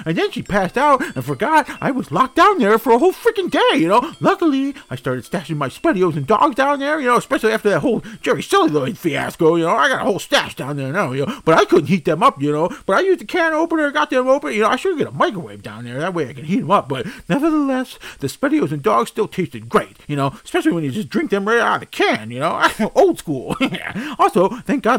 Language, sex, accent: English, male, American